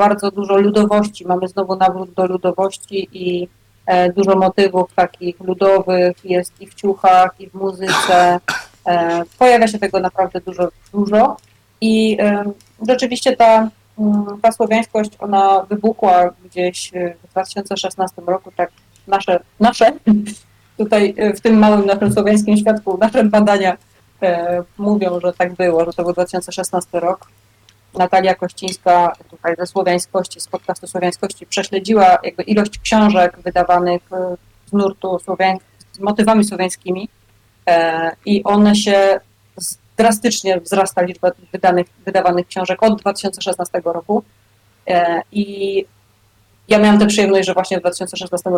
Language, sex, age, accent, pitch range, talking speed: Polish, female, 30-49, native, 180-205 Hz, 130 wpm